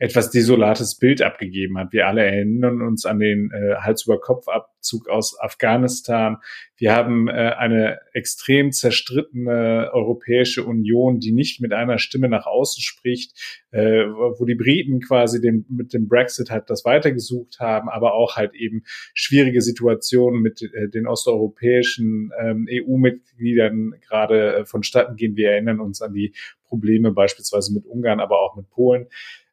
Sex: male